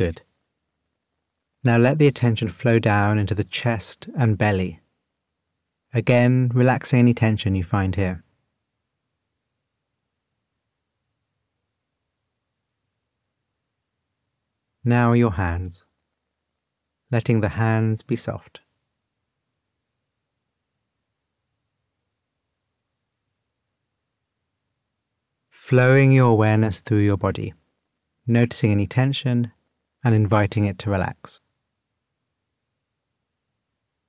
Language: English